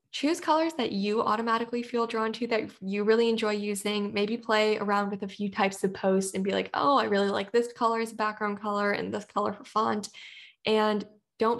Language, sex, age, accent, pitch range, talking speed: English, female, 10-29, American, 205-235 Hz, 215 wpm